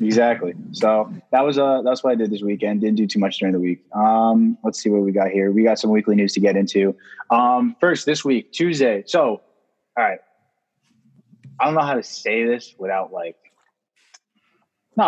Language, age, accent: English, 20-39, American